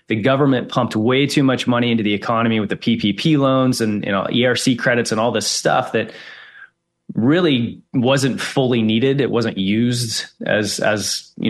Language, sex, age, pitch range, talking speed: English, male, 20-39, 110-130 Hz, 175 wpm